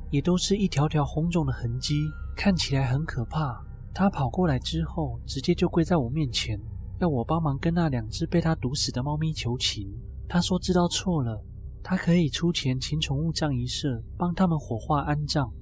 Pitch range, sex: 120-165 Hz, male